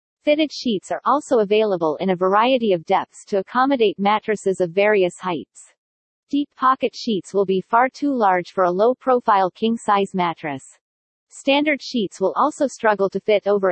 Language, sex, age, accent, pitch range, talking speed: English, female, 40-59, American, 190-250 Hz, 160 wpm